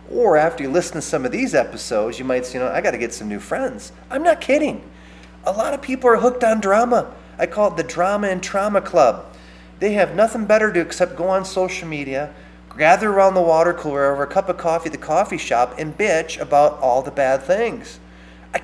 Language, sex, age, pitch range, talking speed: English, male, 30-49, 140-215 Hz, 230 wpm